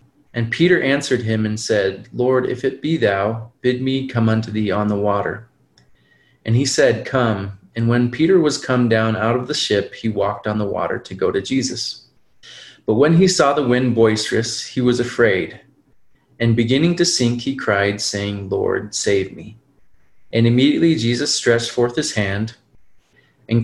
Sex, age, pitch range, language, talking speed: male, 30-49, 110-135 Hz, English, 180 wpm